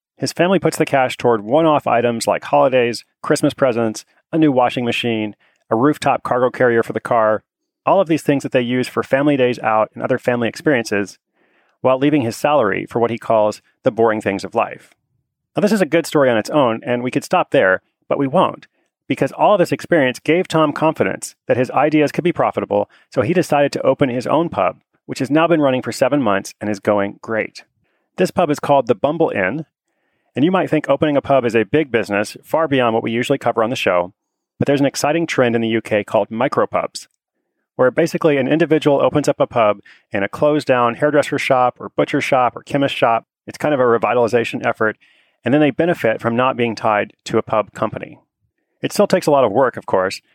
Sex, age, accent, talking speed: male, 30-49, American, 220 wpm